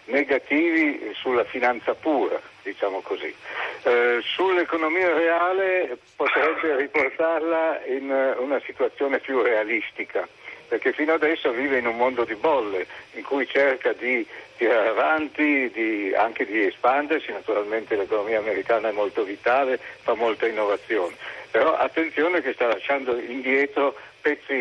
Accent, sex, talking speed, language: native, male, 125 wpm, Italian